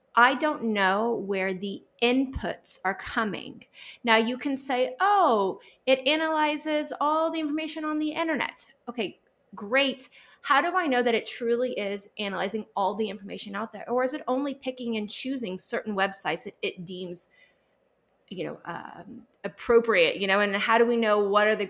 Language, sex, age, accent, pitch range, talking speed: English, female, 30-49, American, 200-270 Hz, 175 wpm